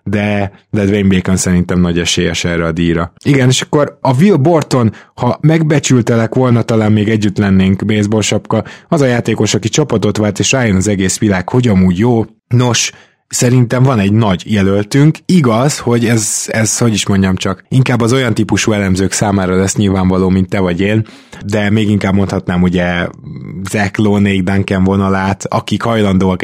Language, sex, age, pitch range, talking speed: Hungarian, male, 20-39, 95-110 Hz, 170 wpm